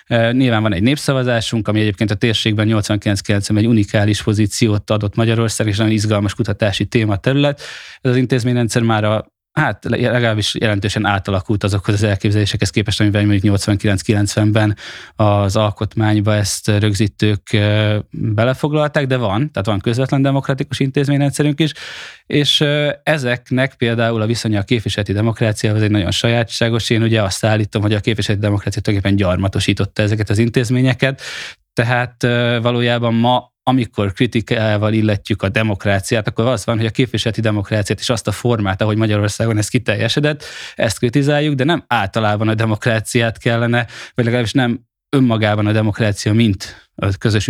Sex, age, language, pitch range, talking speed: male, 20-39, Hungarian, 105-120 Hz, 145 wpm